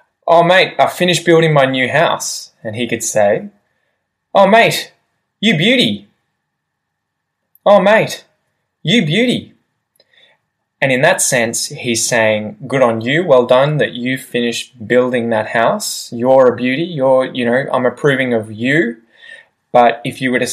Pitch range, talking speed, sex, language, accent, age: 115-160 Hz, 150 wpm, male, English, Australian, 20-39